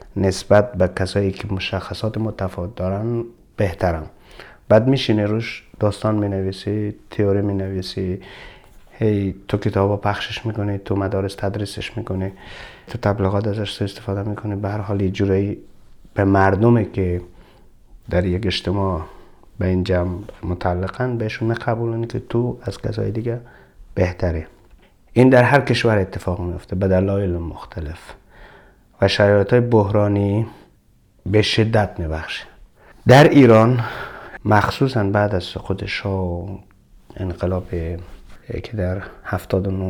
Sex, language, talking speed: male, Persian, 115 wpm